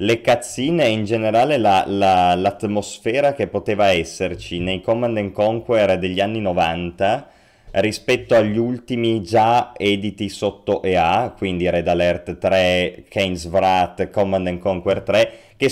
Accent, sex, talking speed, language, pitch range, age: native, male, 130 wpm, Italian, 90-115 Hz, 30-49